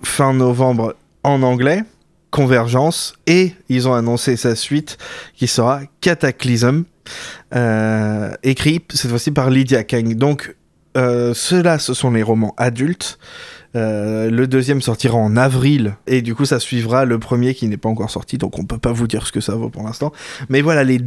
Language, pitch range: French, 115-140 Hz